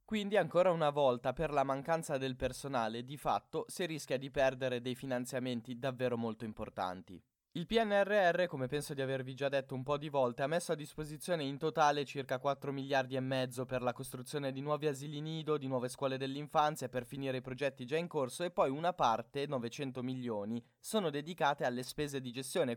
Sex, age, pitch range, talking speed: male, 20-39, 130-165 Hz, 190 wpm